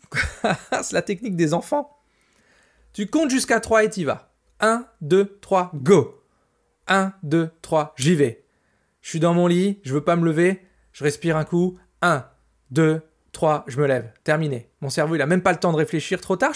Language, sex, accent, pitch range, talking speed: French, male, French, 145-200 Hz, 200 wpm